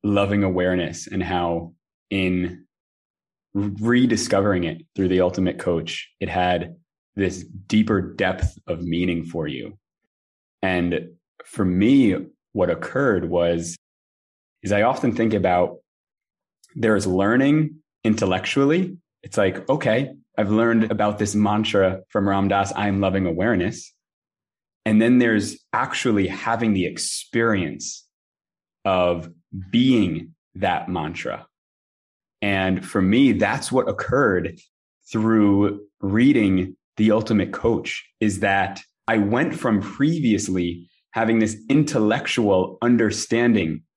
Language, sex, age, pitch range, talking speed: English, male, 20-39, 95-115 Hz, 110 wpm